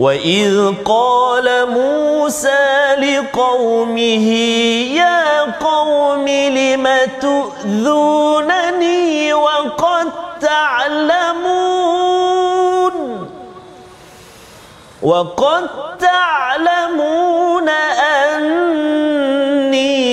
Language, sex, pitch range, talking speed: Malayalam, male, 235-300 Hz, 40 wpm